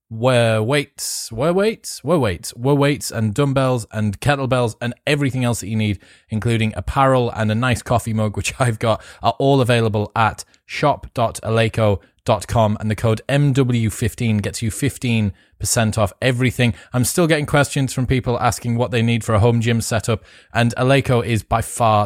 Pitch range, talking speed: 105-125 Hz, 170 wpm